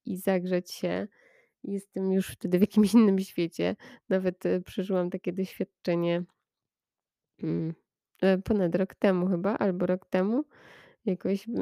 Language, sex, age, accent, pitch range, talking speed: Polish, female, 20-39, native, 180-225 Hz, 115 wpm